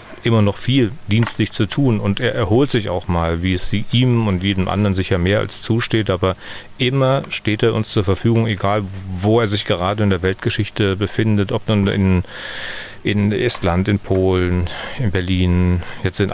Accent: German